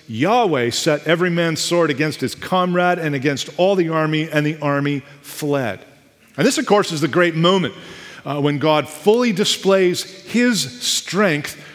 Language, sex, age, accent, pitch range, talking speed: English, male, 40-59, American, 145-185 Hz, 165 wpm